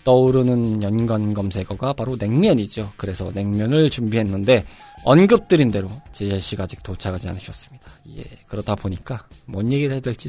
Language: Korean